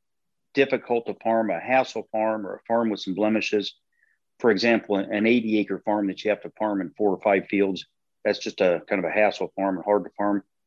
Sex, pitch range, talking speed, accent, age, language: male, 100-115 Hz, 220 wpm, American, 50-69, English